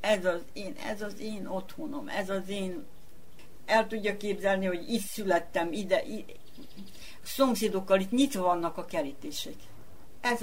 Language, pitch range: Hungarian, 170-230 Hz